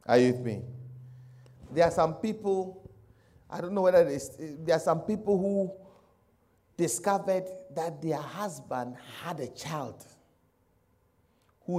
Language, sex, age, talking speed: English, male, 50-69, 125 wpm